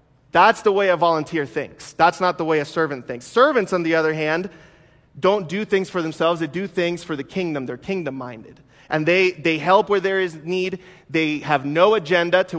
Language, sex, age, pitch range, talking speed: English, male, 30-49, 150-185 Hz, 210 wpm